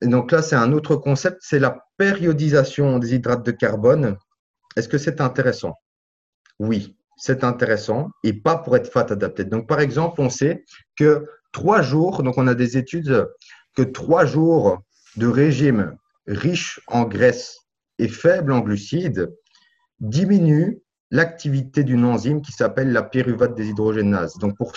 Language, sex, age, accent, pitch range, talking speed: French, male, 30-49, French, 120-160 Hz, 155 wpm